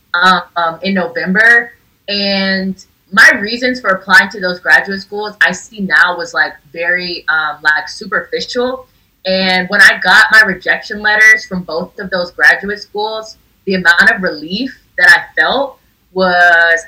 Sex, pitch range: female, 170-205 Hz